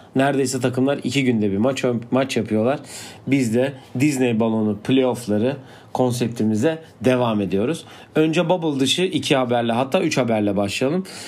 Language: Turkish